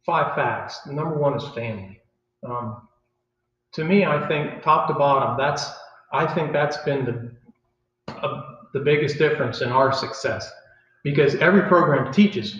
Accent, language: American, English